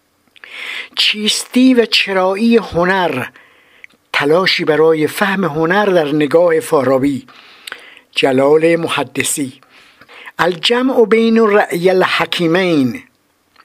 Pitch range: 135-185 Hz